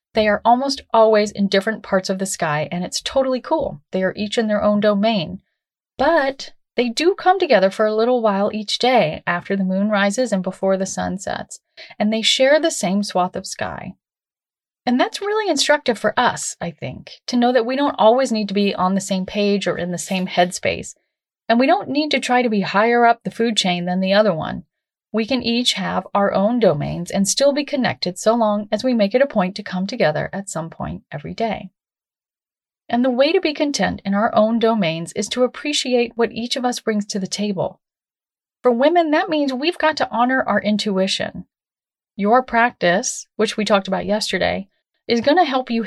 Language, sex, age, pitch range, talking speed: English, female, 30-49, 195-255 Hz, 210 wpm